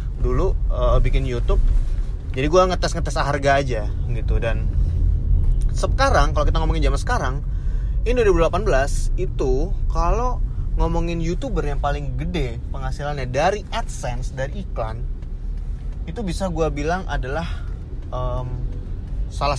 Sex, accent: male, native